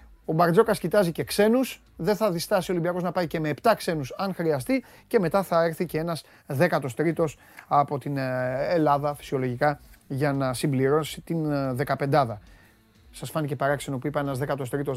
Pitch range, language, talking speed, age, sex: 140-195 Hz, Greek, 165 wpm, 30-49, male